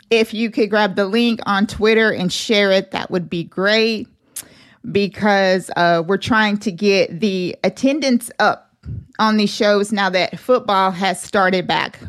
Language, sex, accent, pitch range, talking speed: English, female, American, 200-230 Hz, 165 wpm